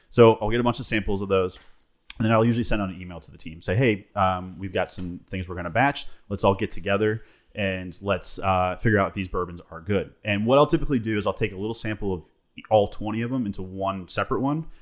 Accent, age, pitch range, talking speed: American, 30-49, 90-110 Hz, 255 wpm